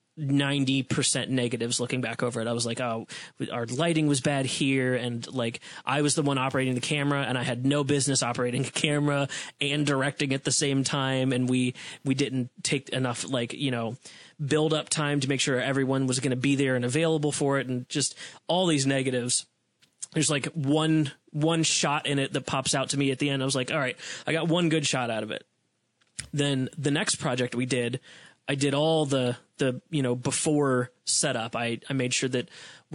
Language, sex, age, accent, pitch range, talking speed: English, male, 20-39, American, 125-150 Hz, 210 wpm